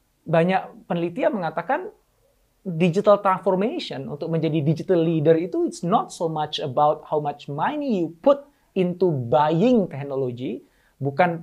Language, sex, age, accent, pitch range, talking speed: Indonesian, male, 30-49, native, 135-185 Hz, 125 wpm